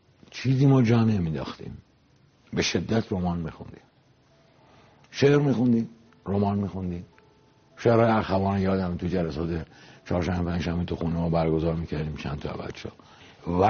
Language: Persian